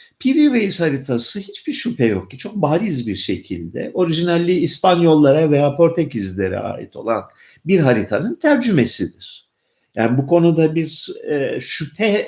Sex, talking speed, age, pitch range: male, 125 wpm, 50-69, 105-165 Hz